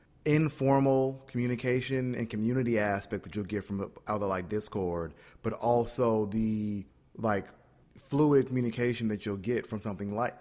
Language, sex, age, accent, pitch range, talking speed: English, male, 30-49, American, 100-120 Hz, 140 wpm